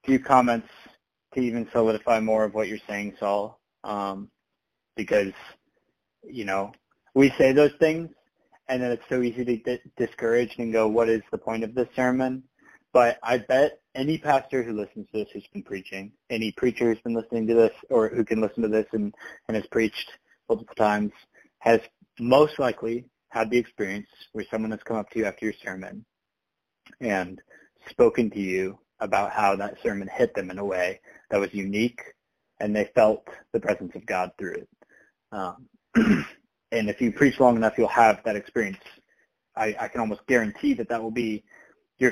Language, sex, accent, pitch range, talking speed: English, male, American, 105-125 Hz, 180 wpm